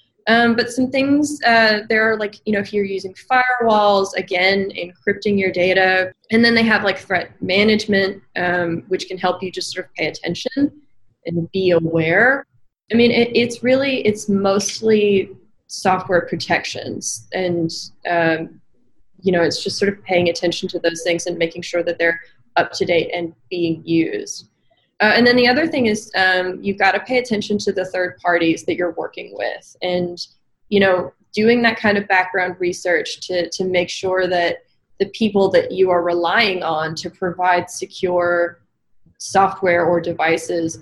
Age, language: 20-39, English